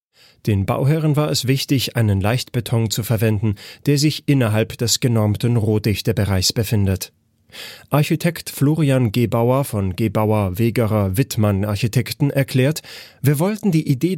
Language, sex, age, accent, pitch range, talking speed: German, male, 30-49, German, 110-140 Hz, 110 wpm